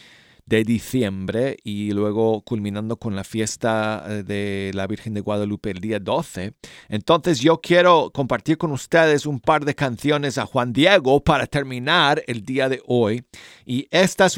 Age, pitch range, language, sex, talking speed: 40-59, 105-140 Hz, Spanish, male, 160 wpm